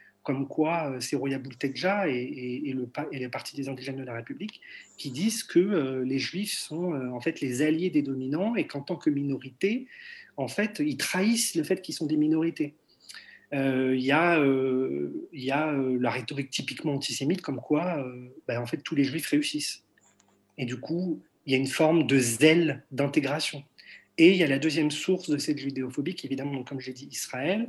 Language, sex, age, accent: Italian, male, 40-59, French